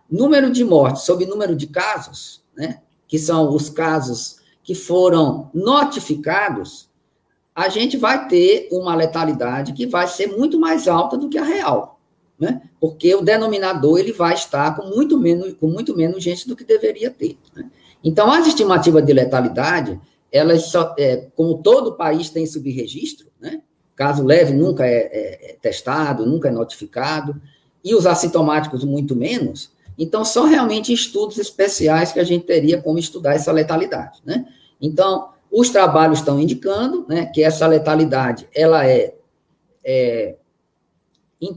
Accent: Brazilian